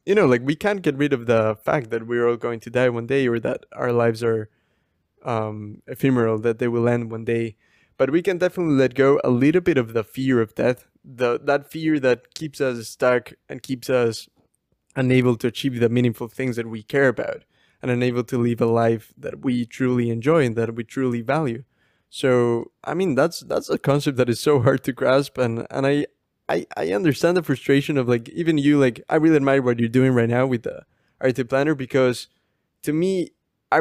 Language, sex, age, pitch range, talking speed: English, male, 20-39, 120-140 Hz, 215 wpm